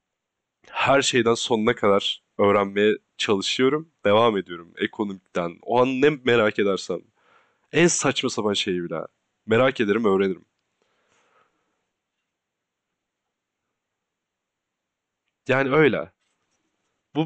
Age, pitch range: 30-49, 100-130 Hz